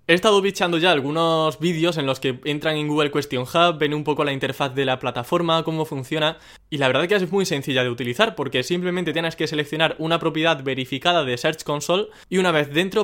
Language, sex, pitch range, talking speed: Spanish, male, 140-175 Hz, 220 wpm